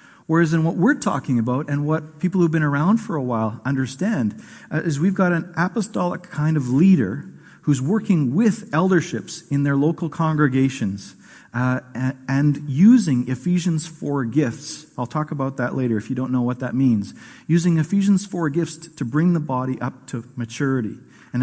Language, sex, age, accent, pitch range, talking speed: English, male, 50-69, American, 125-165 Hz, 175 wpm